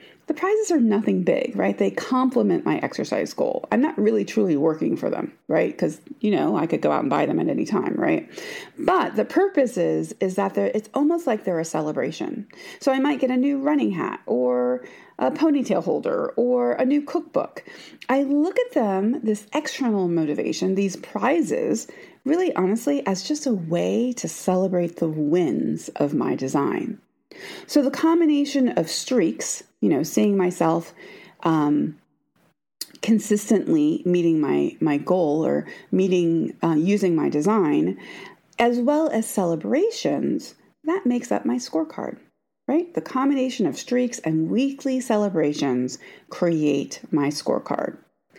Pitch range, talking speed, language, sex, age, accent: 180-285 Hz, 155 wpm, English, female, 30-49, American